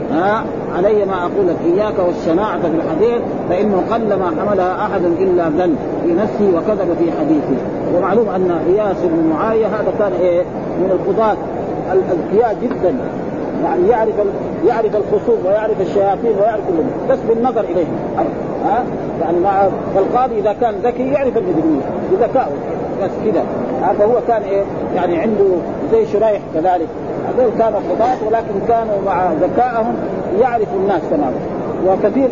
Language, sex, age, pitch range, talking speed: Arabic, male, 40-59, 185-230 Hz, 145 wpm